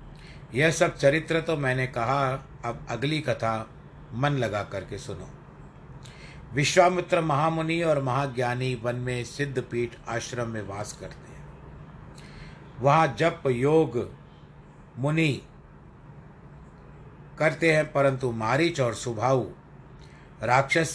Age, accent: 50-69, native